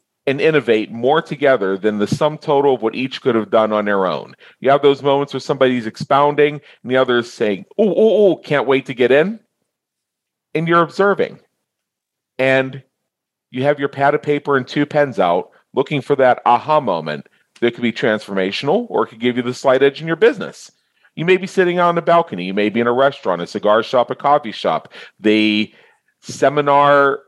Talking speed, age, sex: 200 wpm, 40-59, male